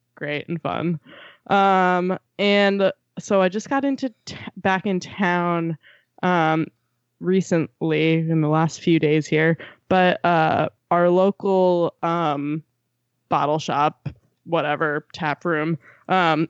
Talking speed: 120 wpm